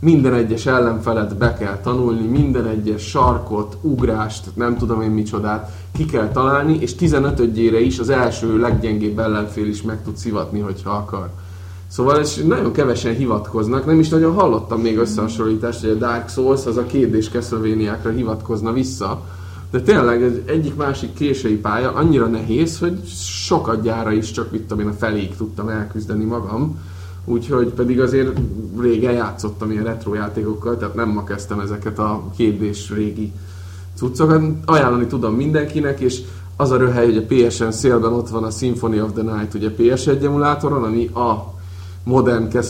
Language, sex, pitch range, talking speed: Hungarian, male, 105-125 Hz, 155 wpm